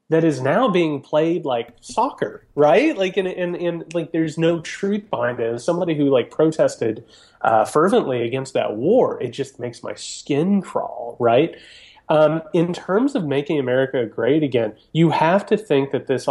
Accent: American